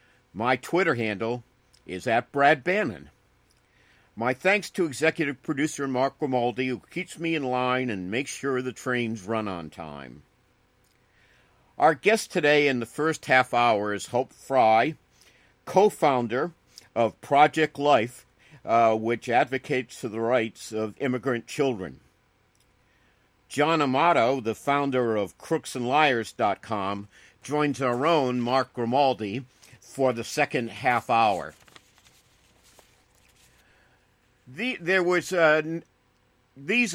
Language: English